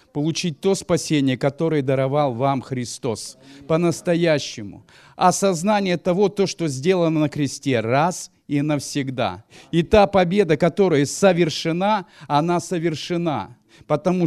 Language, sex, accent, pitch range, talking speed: Russian, male, native, 145-185 Hz, 105 wpm